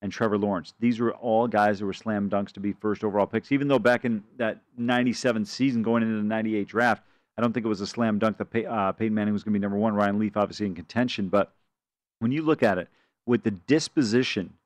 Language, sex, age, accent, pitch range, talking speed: English, male, 40-59, American, 110-135 Hz, 245 wpm